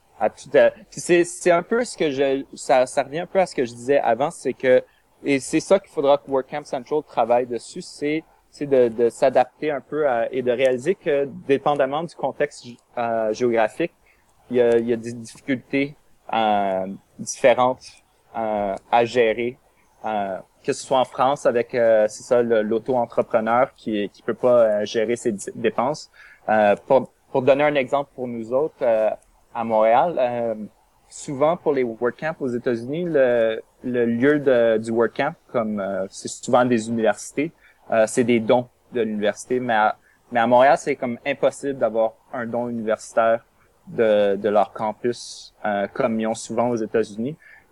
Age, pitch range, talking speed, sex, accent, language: 30-49, 110-140 Hz, 180 wpm, male, Canadian, French